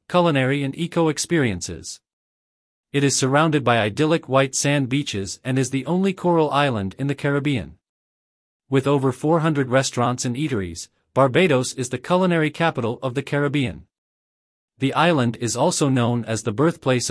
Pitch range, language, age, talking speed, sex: 120-150 Hz, English, 40-59, 145 wpm, male